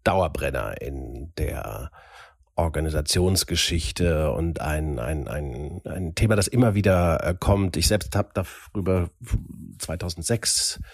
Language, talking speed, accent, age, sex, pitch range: German, 110 wpm, German, 40-59, male, 85-105 Hz